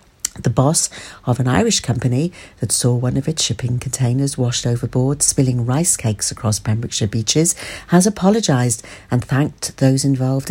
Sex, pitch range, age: female, 135-185 Hz, 60-79